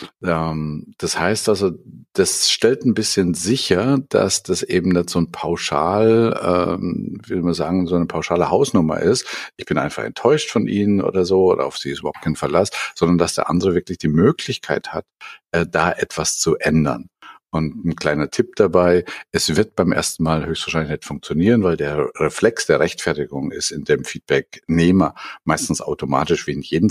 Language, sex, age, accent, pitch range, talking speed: German, male, 50-69, German, 80-95 Hz, 175 wpm